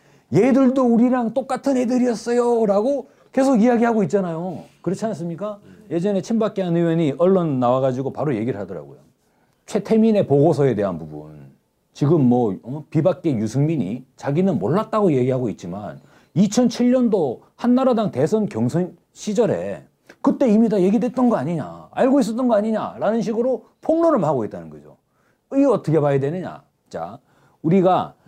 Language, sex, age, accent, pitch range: Korean, male, 40-59, native, 160-230 Hz